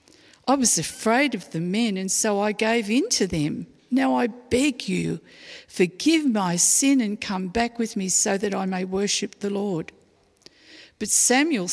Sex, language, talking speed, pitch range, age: female, English, 175 wpm, 180-230 Hz, 50-69